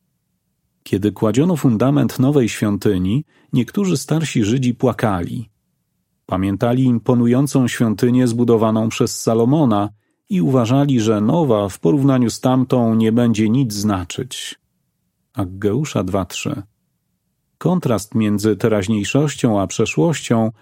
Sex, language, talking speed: male, Polish, 100 wpm